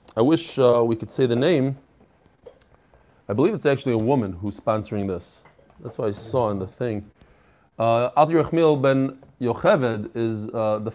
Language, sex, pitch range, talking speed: English, male, 120-150 Hz, 170 wpm